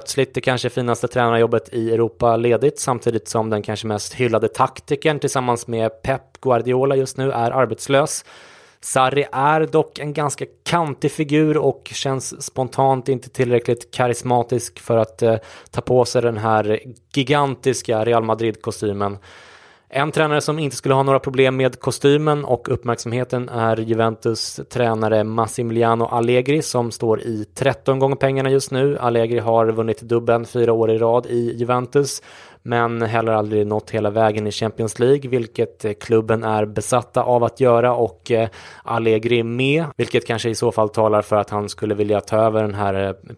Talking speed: 160 wpm